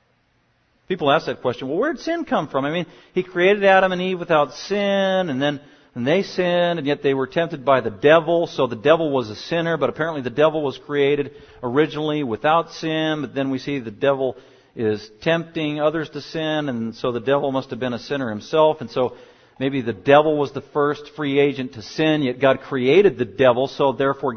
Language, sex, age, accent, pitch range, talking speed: English, male, 50-69, American, 135-155 Hz, 210 wpm